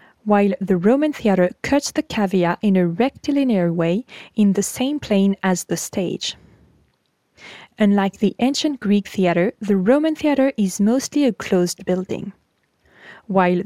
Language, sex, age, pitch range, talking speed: French, female, 20-39, 185-245 Hz, 140 wpm